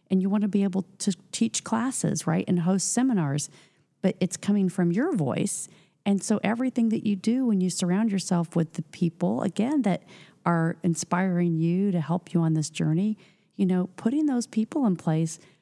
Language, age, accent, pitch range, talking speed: English, 40-59, American, 155-185 Hz, 190 wpm